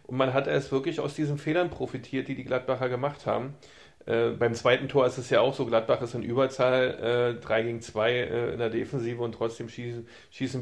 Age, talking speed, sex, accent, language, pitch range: 40-59, 220 wpm, male, German, German, 120-145 Hz